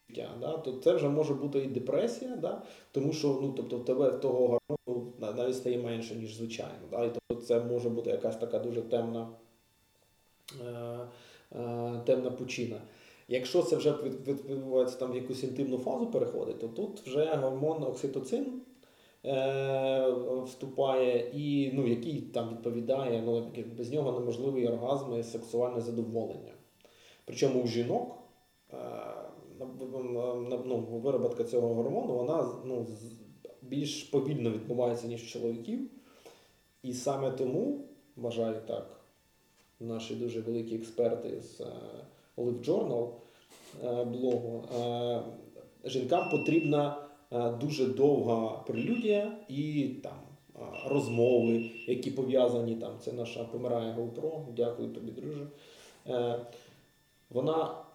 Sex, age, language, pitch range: male, 20-39, Ukrainian, 120-140 Hz